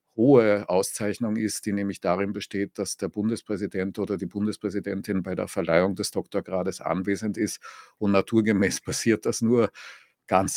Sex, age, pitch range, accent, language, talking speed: male, 50-69, 90-105 Hz, German, English, 150 wpm